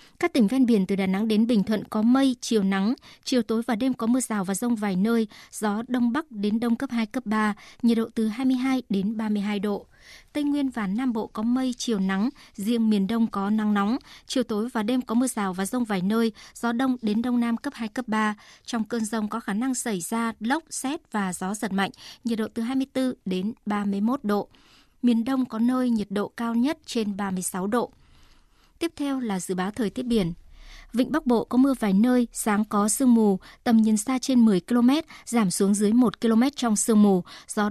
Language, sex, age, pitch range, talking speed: Vietnamese, male, 60-79, 205-245 Hz, 225 wpm